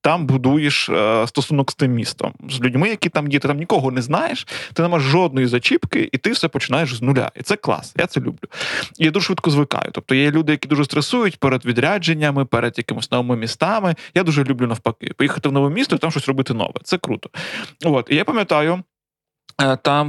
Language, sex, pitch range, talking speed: Ukrainian, male, 135-165 Hz, 205 wpm